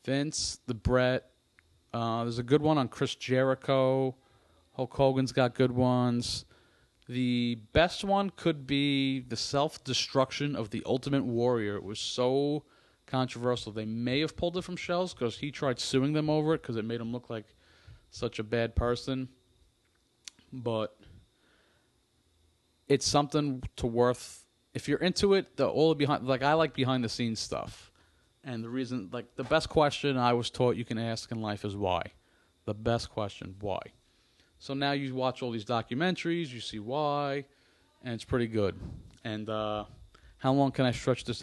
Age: 30-49